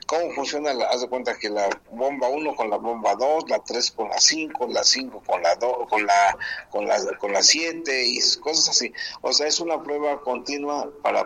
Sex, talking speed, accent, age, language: male, 225 wpm, Mexican, 50-69, Spanish